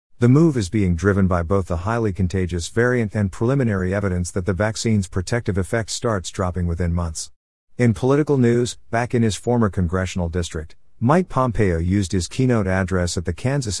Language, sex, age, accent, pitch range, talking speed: English, male, 50-69, American, 90-115 Hz, 180 wpm